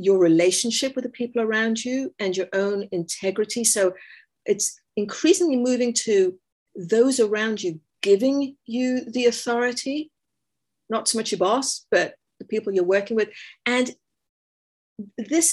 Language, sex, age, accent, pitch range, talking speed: English, female, 50-69, British, 195-265 Hz, 140 wpm